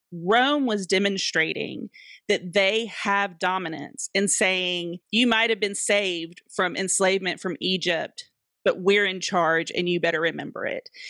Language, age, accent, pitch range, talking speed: English, 30-49, American, 185-230 Hz, 145 wpm